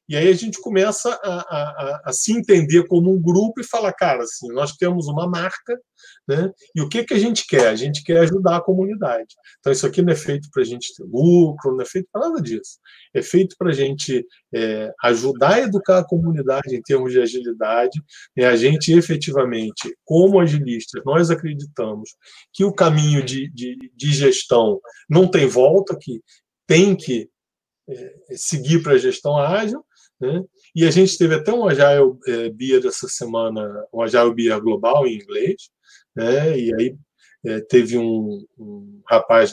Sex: male